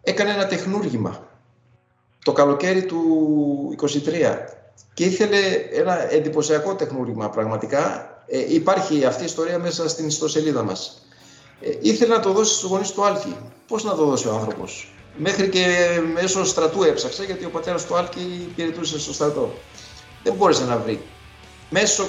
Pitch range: 145-185 Hz